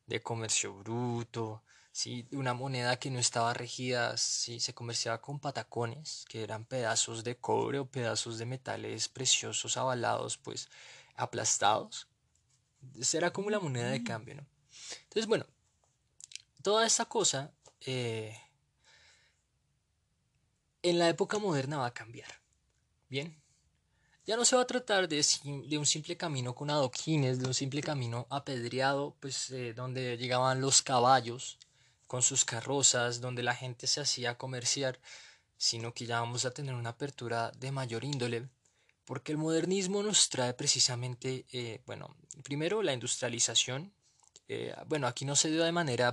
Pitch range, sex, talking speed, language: 120-145 Hz, male, 145 wpm, Spanish